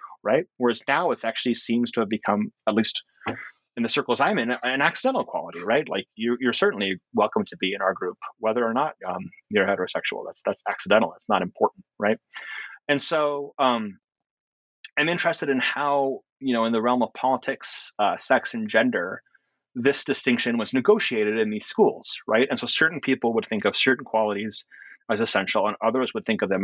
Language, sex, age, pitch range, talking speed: English, male, 30-49, 110-160 Hz, 190 wpm